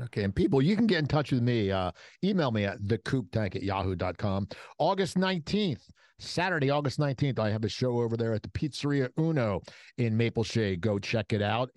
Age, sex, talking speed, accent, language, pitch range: 50-69, male, 200 wpm, American, English, 105-170 Hz